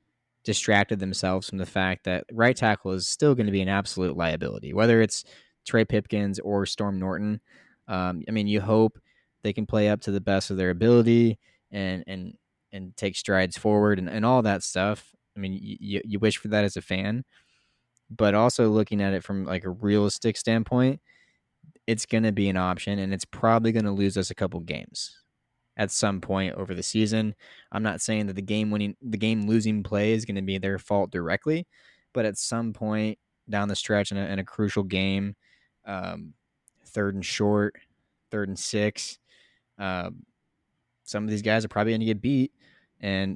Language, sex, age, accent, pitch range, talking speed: English, male, 20-39, American, 95-110 Hz, 195 wpm